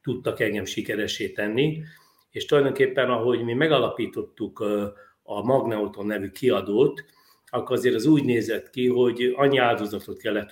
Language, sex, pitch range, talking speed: Hungarian, male, 105-165 Hz, 130 wpm